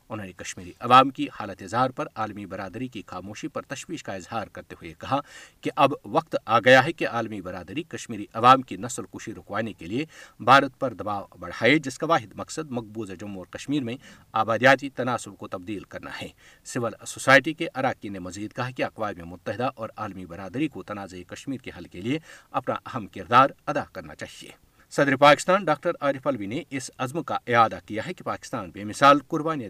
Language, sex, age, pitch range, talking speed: Urdu, male, 50-69, 105-145 Hz, 195 wpm